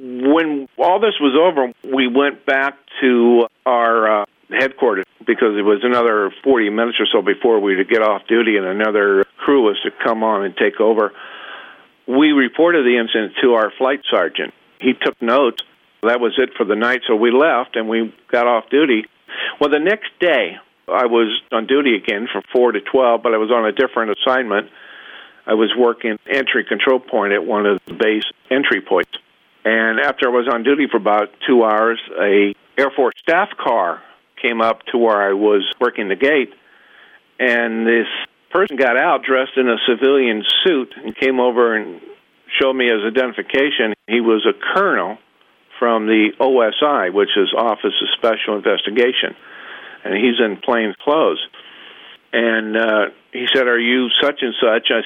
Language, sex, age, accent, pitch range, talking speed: English, male, 50-69, American, 110-130 Hz, 180 wpm